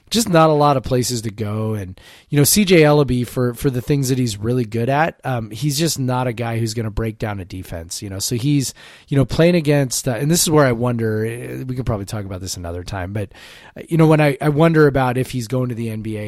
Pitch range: 100-135 Hz